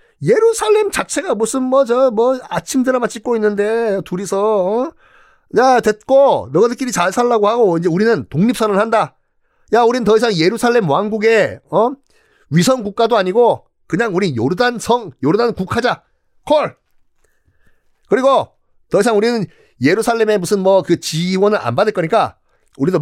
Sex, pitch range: male, 170-245 Hz